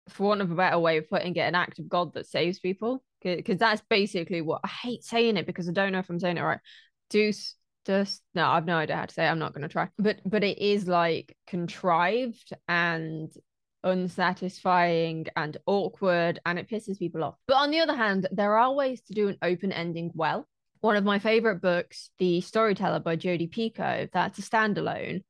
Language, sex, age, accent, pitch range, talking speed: English, female, 20-39, British, 175-205 Hz, 210 wpm